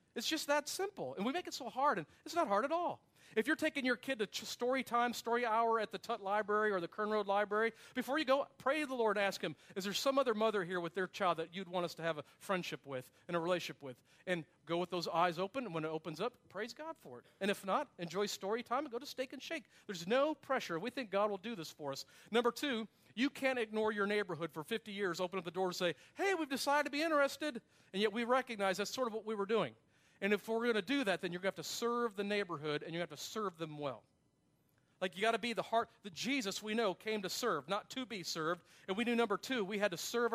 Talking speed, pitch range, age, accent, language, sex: 285 wpm, 180-245 Hz, 40-59, American, English, male